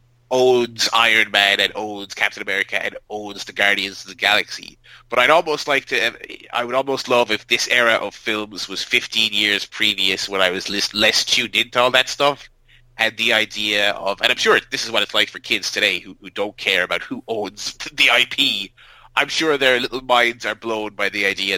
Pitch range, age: 100-130 Hz, 30-49